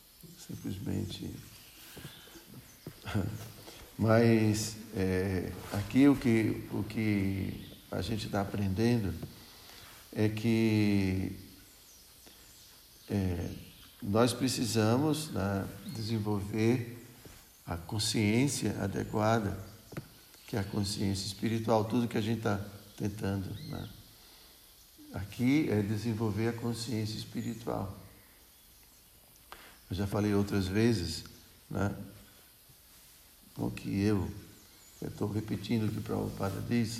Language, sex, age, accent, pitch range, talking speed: Portuguese, male, 60-79, Brazilian, 100-115 Hz, 85 wpm